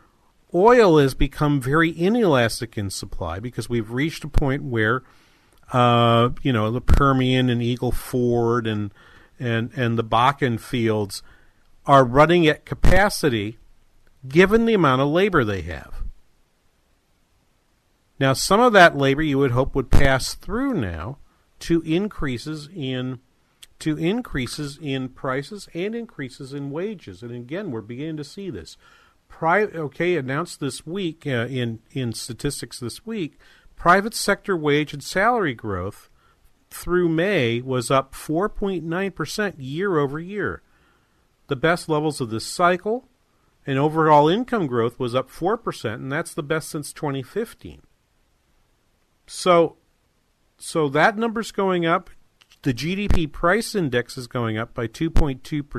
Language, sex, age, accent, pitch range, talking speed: English, male, 50-69, American, 120-170 Hz, 135 wpm